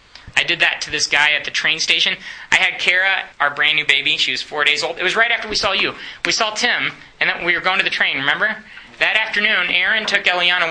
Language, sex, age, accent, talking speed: English, male, 20-39, American, 260 wpm